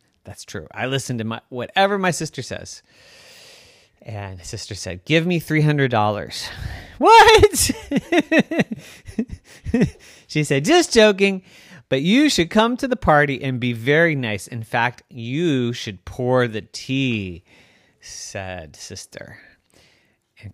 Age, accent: 30-49, American